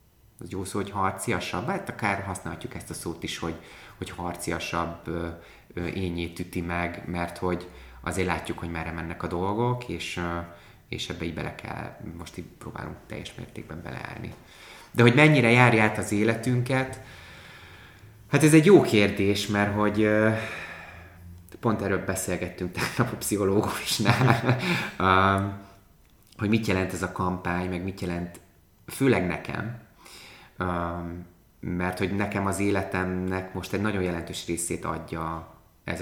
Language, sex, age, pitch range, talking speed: Hungarian, male, 30-49, 85-110 Hz, 140 wpm